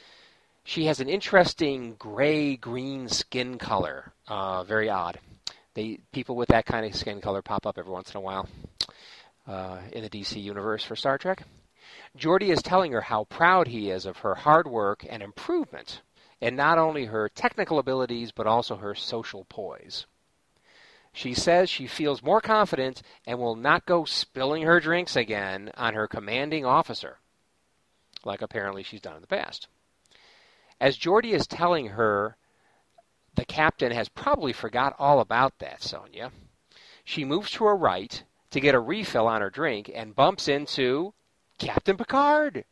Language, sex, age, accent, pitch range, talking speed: English, male, 40-59, American, 110-160 Hz, 160 wpm